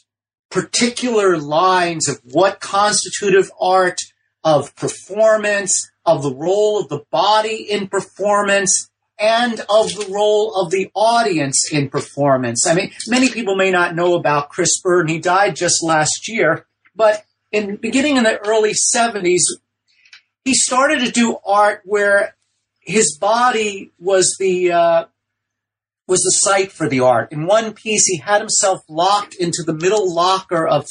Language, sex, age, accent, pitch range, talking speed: English, male, 40-59, American, 165-210 Hz, 150 wpm